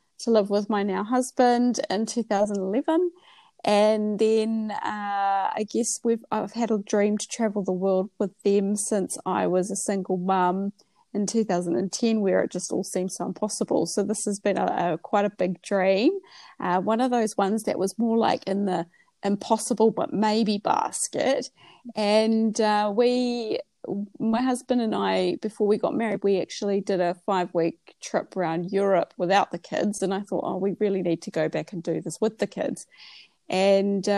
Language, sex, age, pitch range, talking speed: English, female, 30-49, 195-225 Hz, 180 wpm